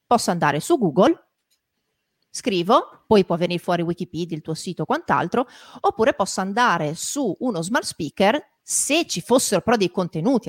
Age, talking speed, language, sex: 40-59, 160 wpm, Italian, female